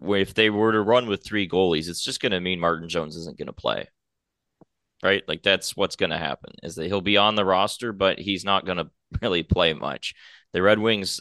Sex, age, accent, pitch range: male, 20-39, American, 90-110 Hz